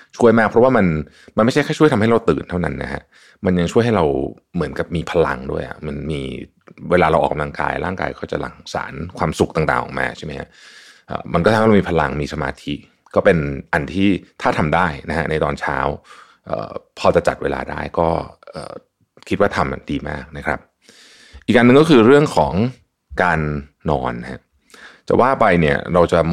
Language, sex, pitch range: Thai, male, 75-95 Hz